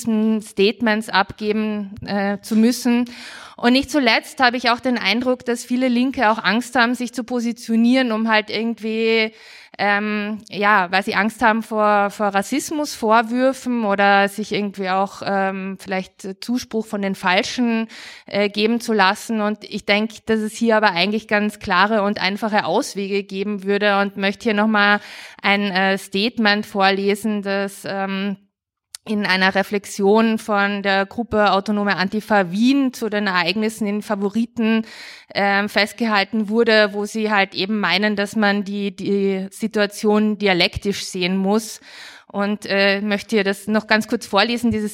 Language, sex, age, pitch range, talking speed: German, female, 20-39, 195-220 Hz, 150 wpm